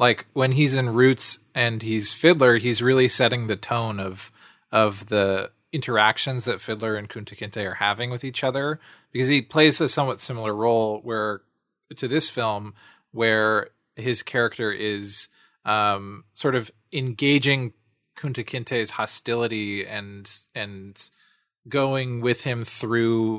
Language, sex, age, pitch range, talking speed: English, male, 20-39, 105-130 Hz, 140 wpm